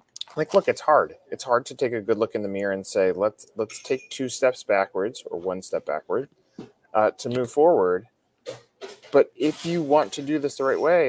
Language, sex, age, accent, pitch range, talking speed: English, male, 30-49, American, 110-155 Hz, 215 wpm